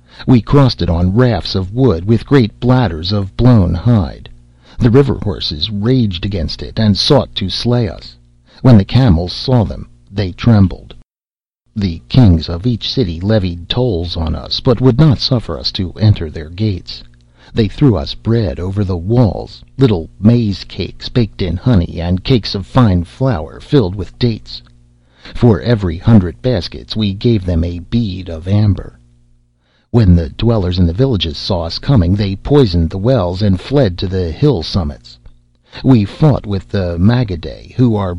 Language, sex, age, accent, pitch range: Korean, male, 60-79, American, 85-120 Hz